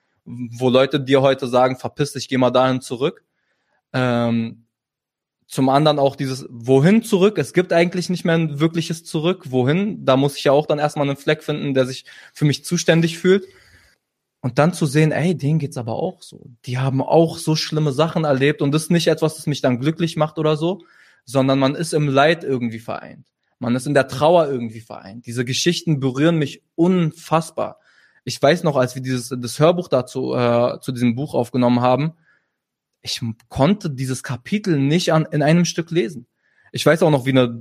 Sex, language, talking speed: male, German, 195 wpm